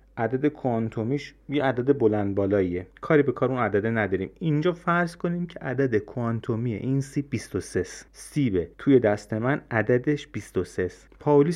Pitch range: 105-140 Hz